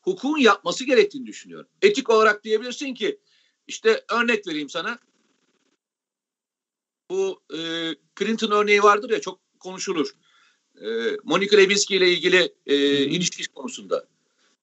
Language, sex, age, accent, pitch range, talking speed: Turkish, male, 50-69, native, 210-290 Hz, 115 wpm